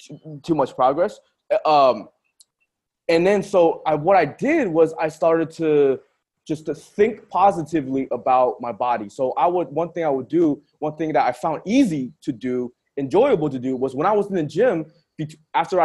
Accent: American